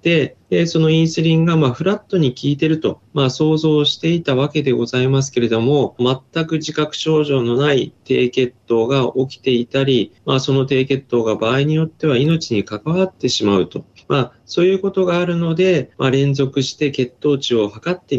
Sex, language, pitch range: male, Japanese, 120-160 Hz